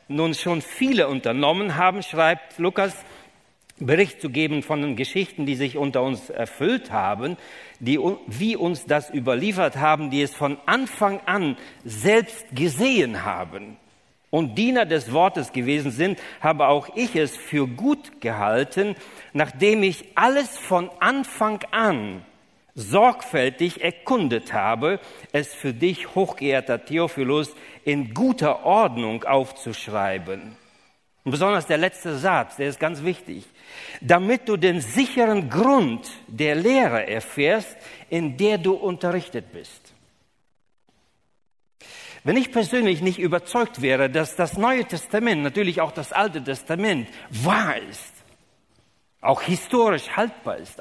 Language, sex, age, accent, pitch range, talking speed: German, male, 50-69, German, 140-200 Hz, 125 wpm